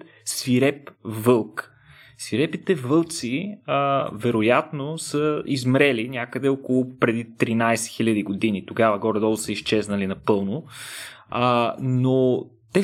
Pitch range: 110-150 Hz